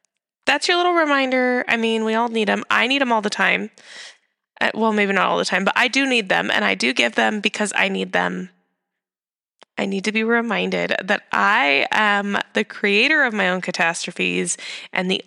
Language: English